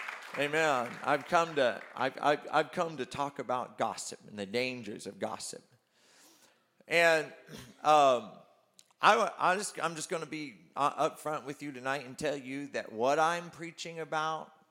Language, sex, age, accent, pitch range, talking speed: English, male, 50-69, American, 130-170 Hz, 165 wpm